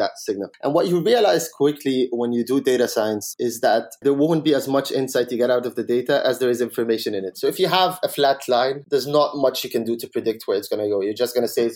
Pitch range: 120-150 Hz